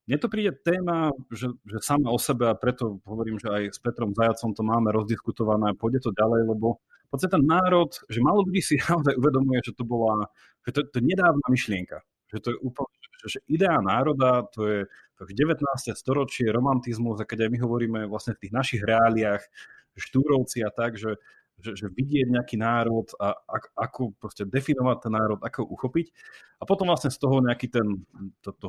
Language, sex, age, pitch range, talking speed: Slovak, male, 30-49, 105-135 Hz, 190 wpm